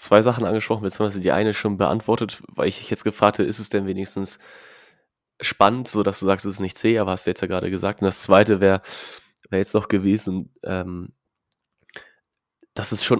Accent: German